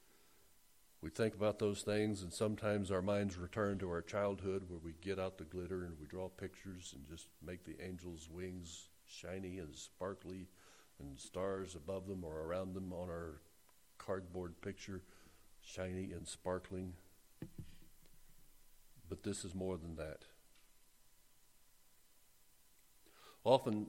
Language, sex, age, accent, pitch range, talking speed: English, male, 60-79, American, 90-110 Hz, 135 wpm